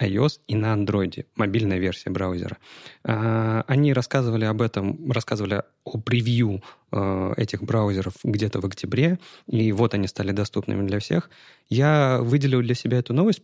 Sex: male